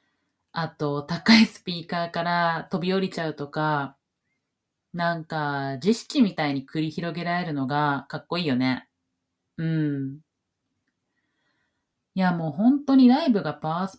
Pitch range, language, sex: 135-195 Hz, Japanese, female